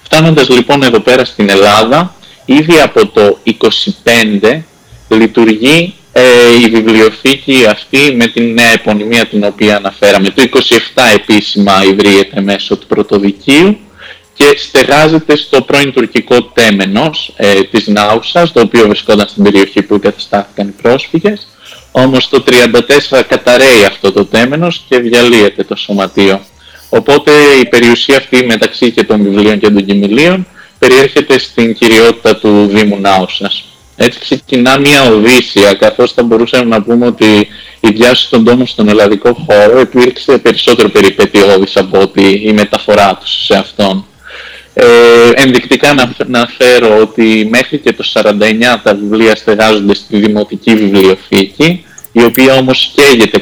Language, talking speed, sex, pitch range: Greek, 135 wpm, male, 105-130 Hz